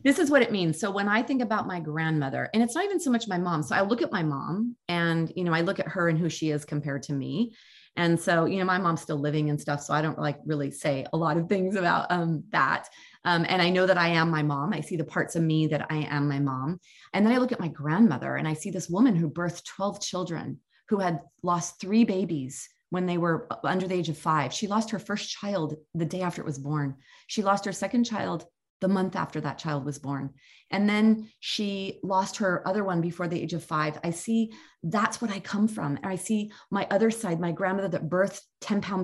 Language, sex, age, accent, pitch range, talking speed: English, female, 30-49, American, 160-210 Hz, 255 wpm